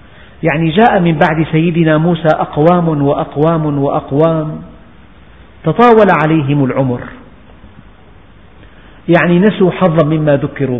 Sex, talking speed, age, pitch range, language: male, 95 wpm, 50-69, 140-180 Hz, Arabic